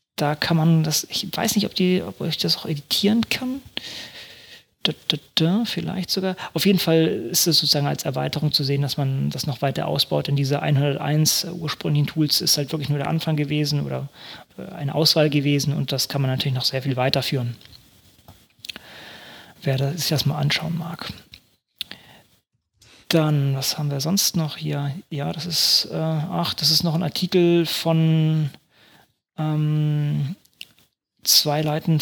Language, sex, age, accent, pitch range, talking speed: German, male, 30-49, German, 145-165 Hz, 155 wpm